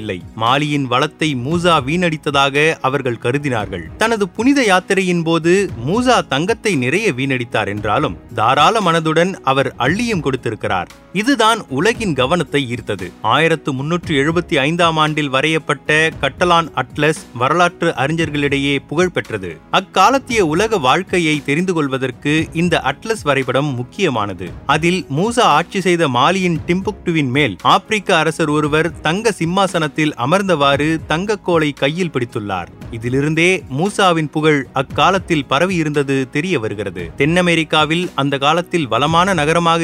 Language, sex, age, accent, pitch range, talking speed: Tamil, male, 30-49, native, 140-180 Hz, 105 wpm